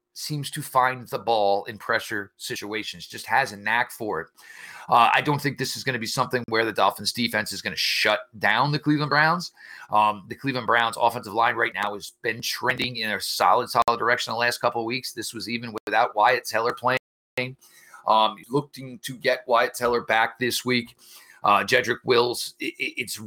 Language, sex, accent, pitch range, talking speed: English, male, American, 105-125 Hz, 200 wpm